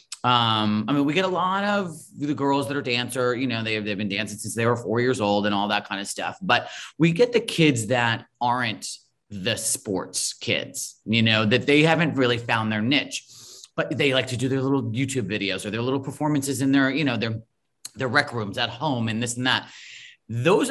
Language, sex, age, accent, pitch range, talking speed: English, male, 30-49, American, 115-150 Hz, 225 wpm